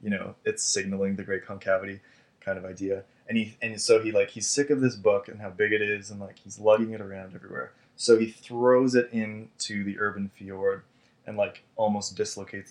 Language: English